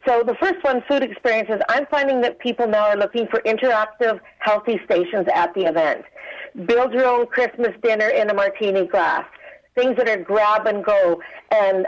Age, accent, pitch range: 50-69, American, 200-270 Hz